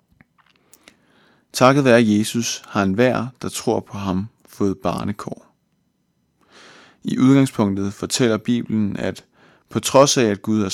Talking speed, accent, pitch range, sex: 125 wpm, native, 105-120 Hz, male